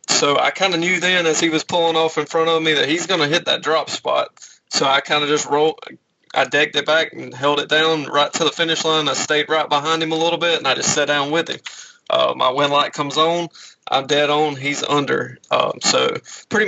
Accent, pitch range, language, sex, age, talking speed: American, 140-160 Hz, English, male, 20-39, 255 wpm